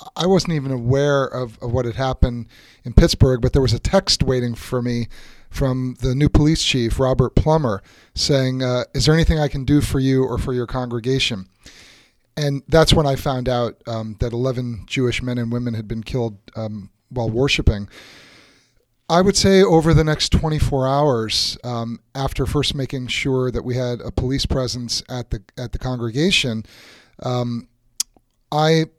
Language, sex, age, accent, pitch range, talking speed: English, male, 30-49, American, 120-145 Hz, 175 wpm